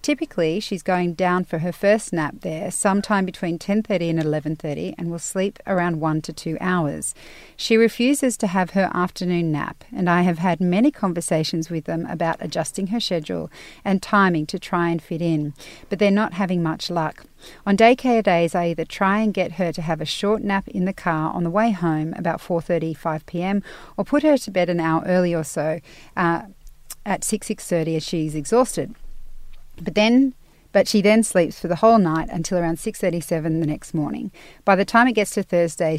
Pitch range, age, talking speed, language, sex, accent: 165-205 Hz, 40-59, 200 wpm, English, female, Australian